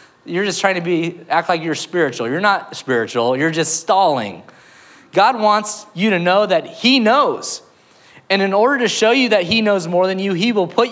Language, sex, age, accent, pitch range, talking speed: English, male, 30-49, American, 165-205 Hz, 210 wpm